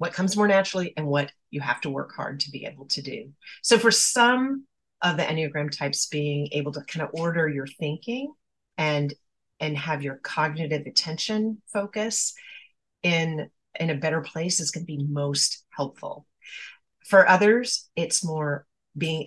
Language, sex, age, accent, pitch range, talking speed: English, female, 40-59, American, 140-180 Hz, 170 wpm